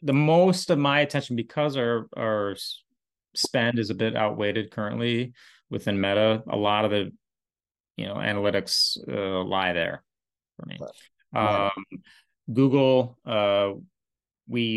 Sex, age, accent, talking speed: male, 30-49, American, 130 wpm